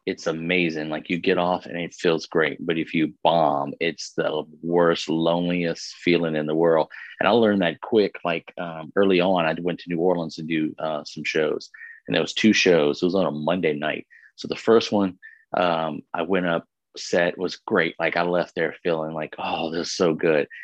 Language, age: English, 30-49